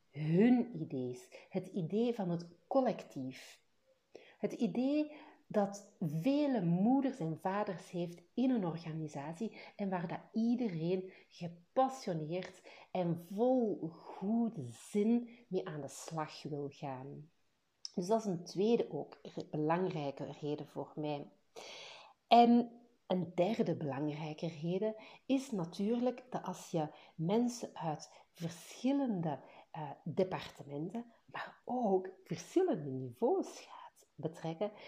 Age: 50-69